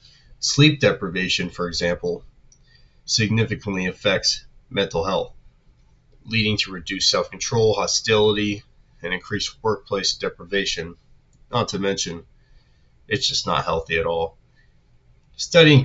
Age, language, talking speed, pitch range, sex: 30-49, English, 100 wpm, 90-110 Hz, male